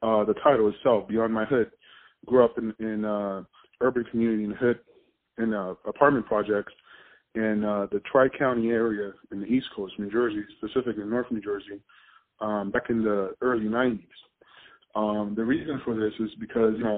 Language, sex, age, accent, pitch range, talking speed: English, male, 20-39, American, 105-125 Hz, 185 wpm